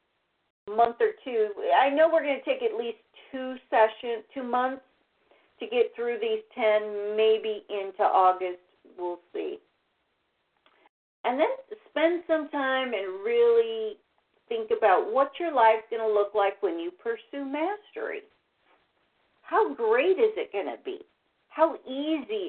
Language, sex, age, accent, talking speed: English, female, 50-69, American, 145 wpm